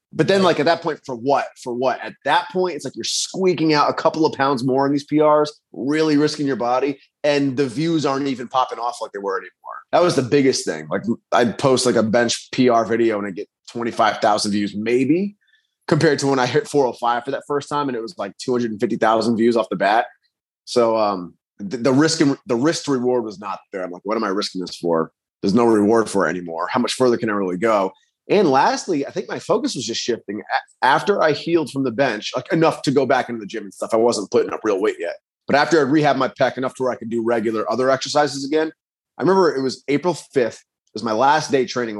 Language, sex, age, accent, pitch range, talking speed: English, male, 30-49, American, 115-150 Hz, 245 wpm